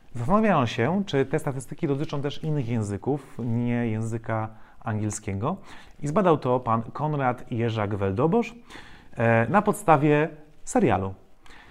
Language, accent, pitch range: Polish, native, 110-155 Hz